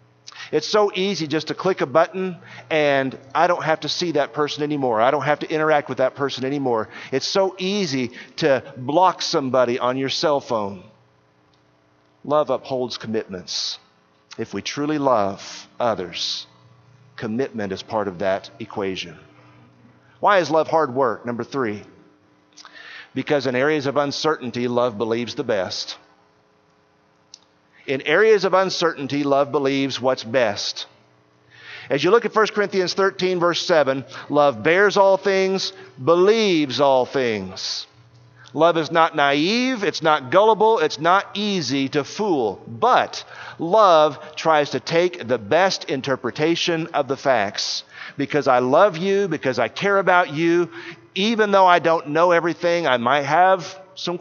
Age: 50-69